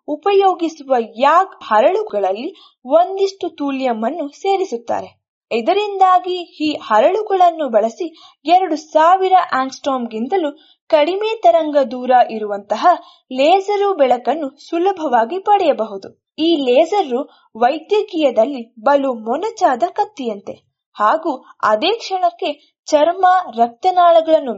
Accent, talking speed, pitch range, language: native, 80 wpm, 255-370 Hz, Kannada